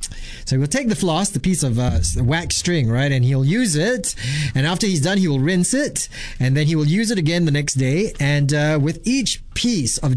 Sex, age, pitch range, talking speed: male, 30-49, 130-185 Hz, 235 wpm